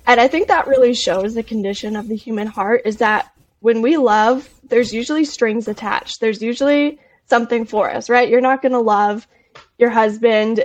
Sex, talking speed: female, 190 wpm